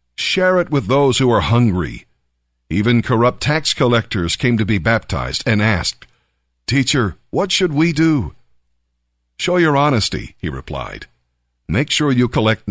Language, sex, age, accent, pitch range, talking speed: English, male, 50-69, American, 85-130 Hz, 145 wpm